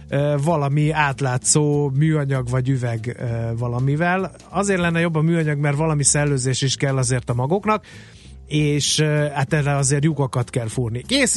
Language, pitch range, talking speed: Hungarian, 130-160 Hz, 160 wpm